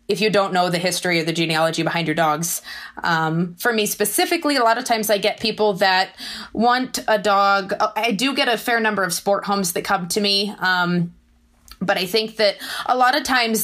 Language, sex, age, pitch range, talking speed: English, female, 20-39, 175-210 Hz, 215 wpm